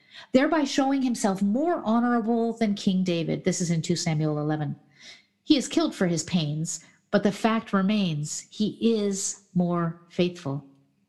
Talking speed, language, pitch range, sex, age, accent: 150 wpm, English, 175-235 Hz, female, 50-69, American